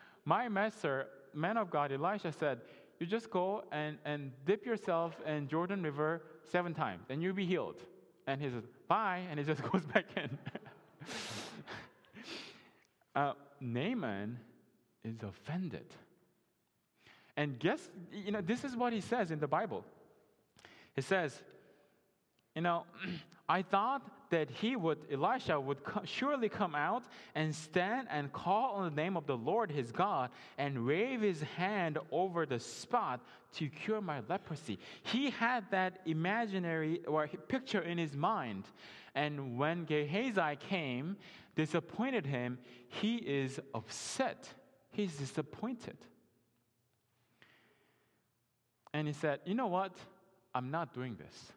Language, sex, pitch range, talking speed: English, male, 140-195 Hz, 135 wpm